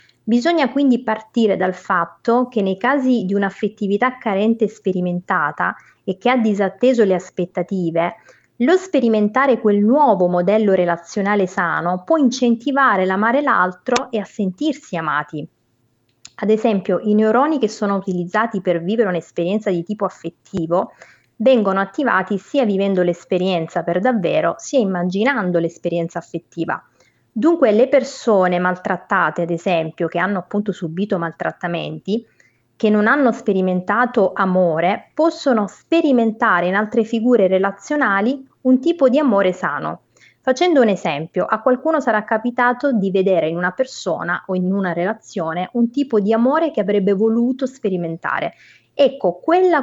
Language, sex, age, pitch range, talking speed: Italian, female, 30-49, 180-245 Hz, 130 wpm